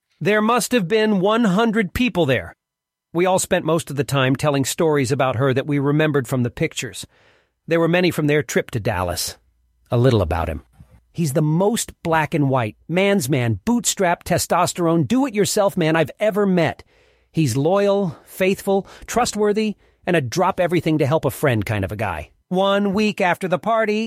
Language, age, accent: English, 40-59, American